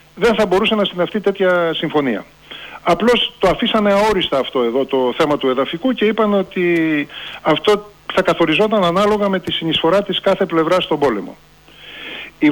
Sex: male